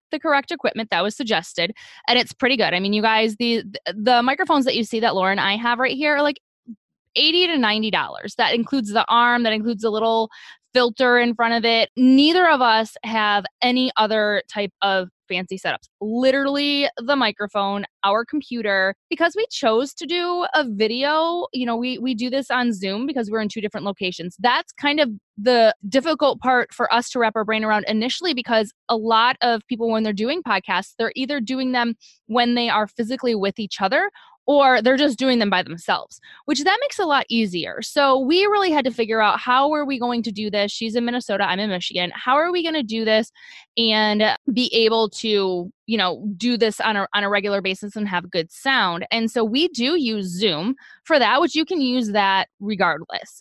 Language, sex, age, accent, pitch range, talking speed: English, female, 20-39, American, 205-260 Hz, 210 wpm